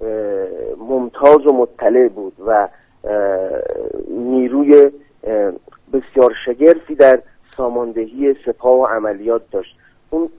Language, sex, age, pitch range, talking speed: Persian, male, 40-59, 115-150 Hz, 85 wpm